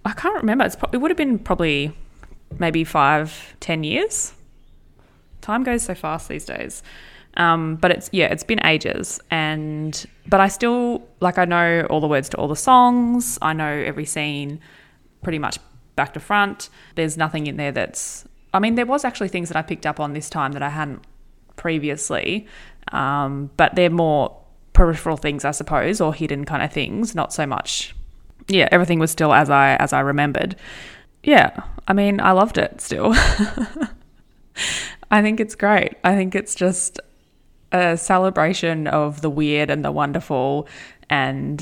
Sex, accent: female, Australian